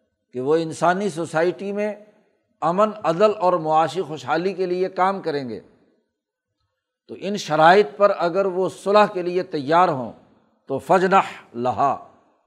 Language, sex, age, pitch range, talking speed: Urdu, male, 60-79, 155-205 Hz, 140 wpm